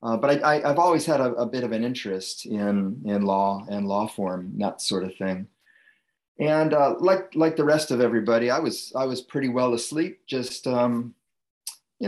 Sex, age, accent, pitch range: male, 30-49, American, 110-135 Hz